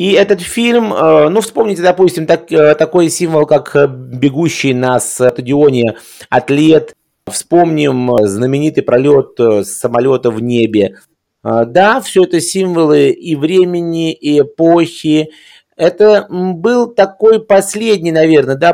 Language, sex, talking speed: Russian, male, 105 wpm